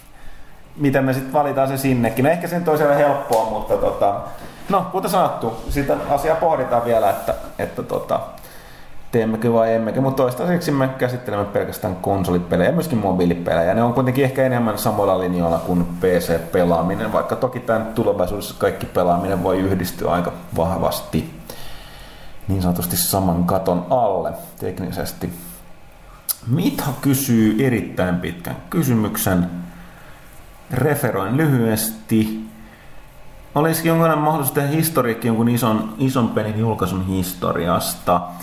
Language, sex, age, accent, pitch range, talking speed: Finnish, male, 30-49, native, 95-135 Hz, 120 wpm